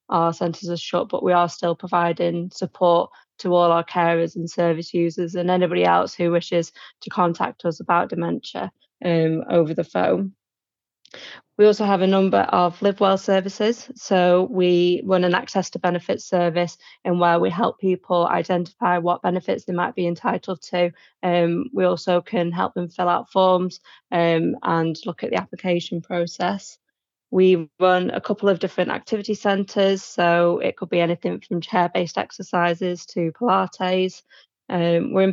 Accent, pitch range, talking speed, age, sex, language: British, 170-185 Hz, 165 wpm, 20-39, female, English